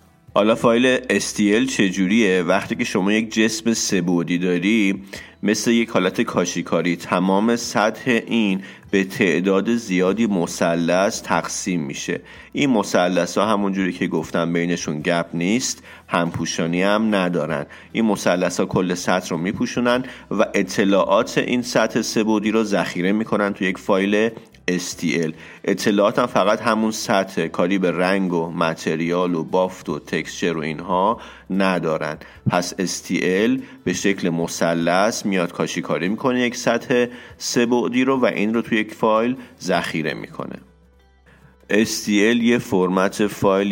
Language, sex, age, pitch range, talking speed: Persian, male, 40-59, 90-110 Hz, 135 wpm